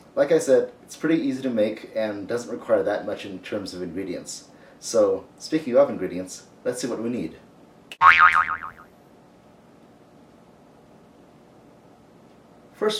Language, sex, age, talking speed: English, male, 30-49, 125 wpm